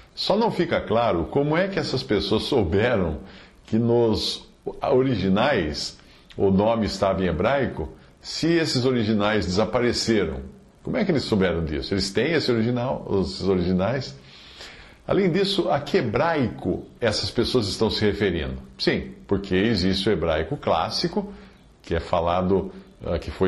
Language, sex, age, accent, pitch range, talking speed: Portuguese, male, 50-69, Brazilian, 90-125 Hz, 130 wpm